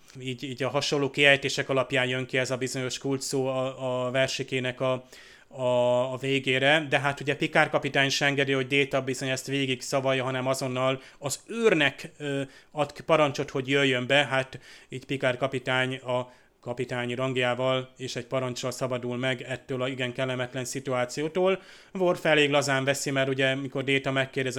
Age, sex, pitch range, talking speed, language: 30-49, male, 130-145 Hz, 165 wpm, Hungarian